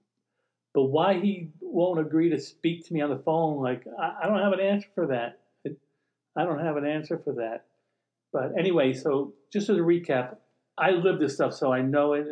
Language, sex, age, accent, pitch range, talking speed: English, male, 50-69, American, 125-155 Hz, 205 wpm